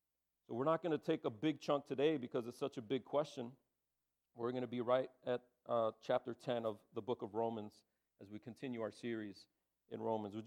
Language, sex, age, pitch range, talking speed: English, male, 40-59, 125-175 Hz, 220 wpm